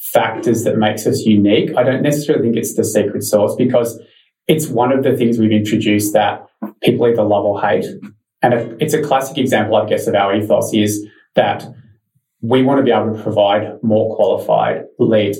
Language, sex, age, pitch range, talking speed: English, male, 20-39, 105-130 Hz, 190 wpm